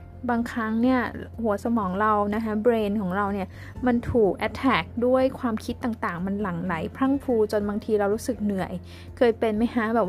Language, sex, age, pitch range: Thai, female, 20-39, 205-245 Hz